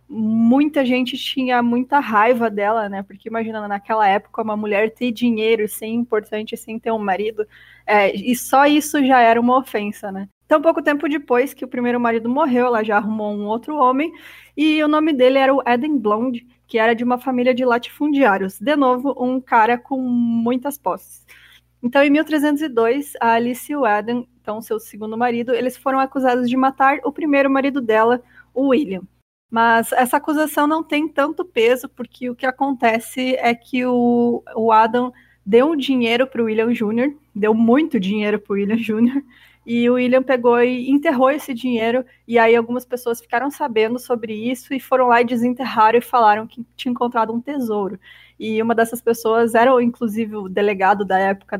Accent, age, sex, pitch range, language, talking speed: Brazilian, 20-39, female, 225-265 Hz, Portuguese, 185 wpm